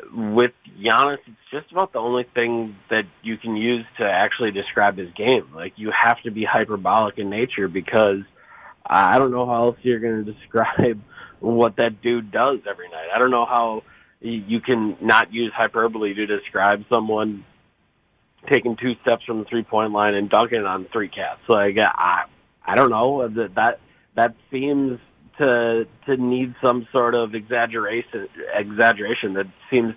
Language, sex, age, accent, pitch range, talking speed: English, male, 30-49, American, 105-120 Hz, 170 wpm